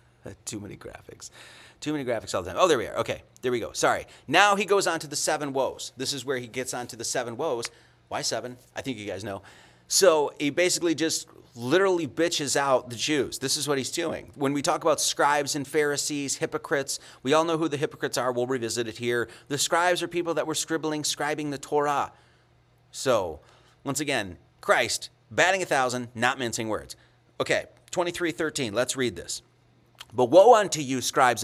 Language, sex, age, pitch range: English, male, 30-49, 120-170 Hz